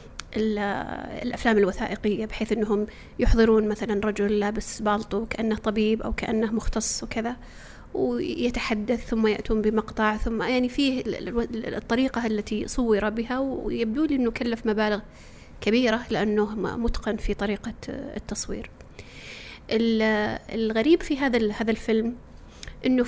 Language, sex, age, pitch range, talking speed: Arabic, female, 30-49, 215-245 Hz, 110 wpm